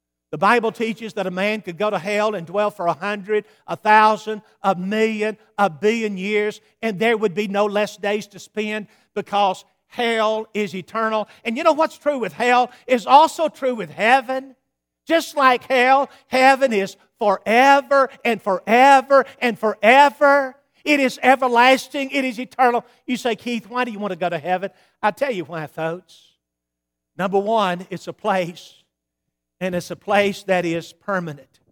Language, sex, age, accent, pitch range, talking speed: English, male, 50-69, American, 165-225 Hz, 170 wpm